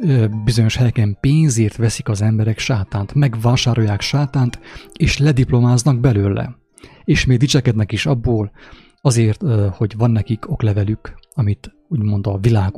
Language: English